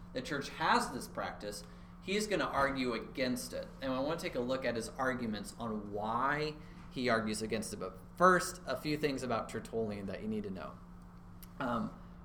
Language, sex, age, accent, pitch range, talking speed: English, male, 30-49, American, 105-140 Hz, 195 wpm